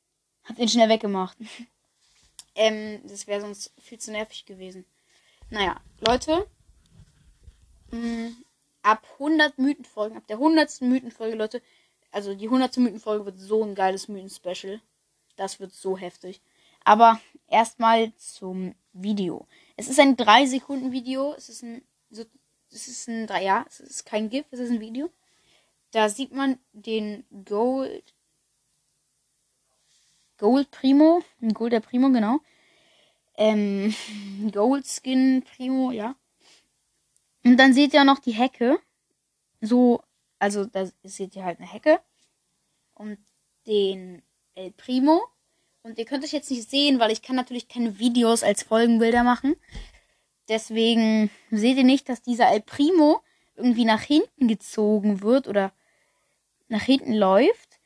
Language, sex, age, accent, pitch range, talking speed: German, female, 10-29, German, 210-265 Hz, 130 wpm